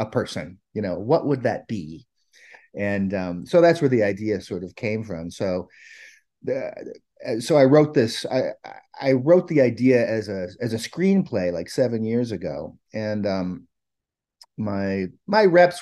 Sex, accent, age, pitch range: male, American, 30-49, 100-155 Hz